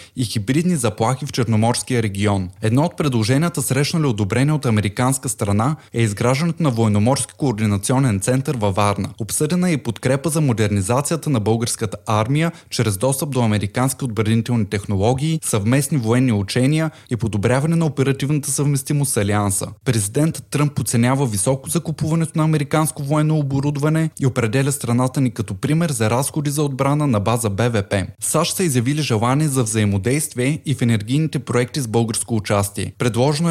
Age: 20-39